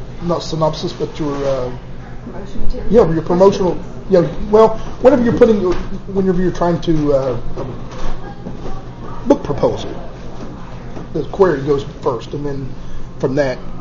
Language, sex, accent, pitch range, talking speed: English, male, American, 145-175 Hz, 125 wpm